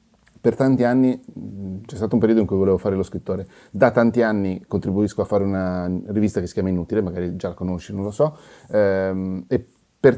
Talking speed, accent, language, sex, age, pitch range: 200 wpm, native, Italian, male, 30-49, 95-120 Hz